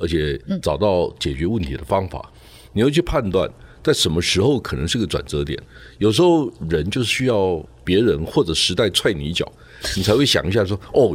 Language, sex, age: Chinese, male, 50-69